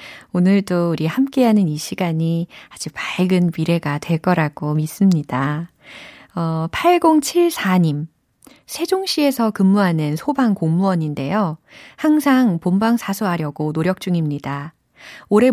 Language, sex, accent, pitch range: Korean, female, native, 160-230 Hz